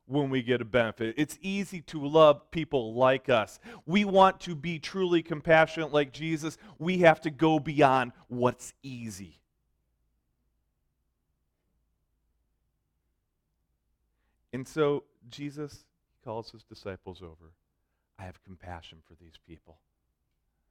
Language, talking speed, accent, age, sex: English, 115 wpm, American, 40-59, male